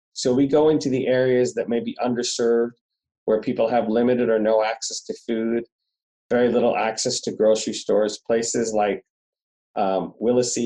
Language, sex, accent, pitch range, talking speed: English, male, American, 110-130 Hz, 165 wpm